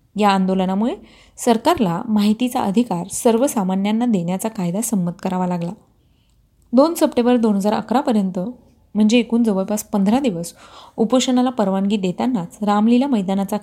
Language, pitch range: Marathi, 195-240 Hz